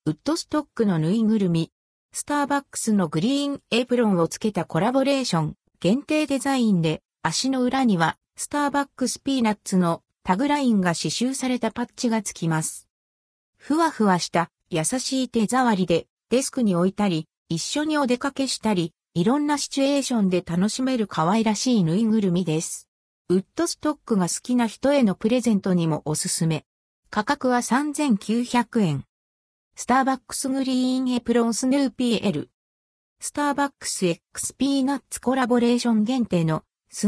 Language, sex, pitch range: Japanese, female, 180-265 Hz